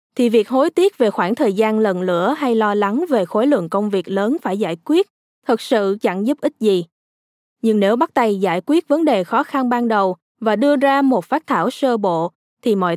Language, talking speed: Vietnamese, 230 wpm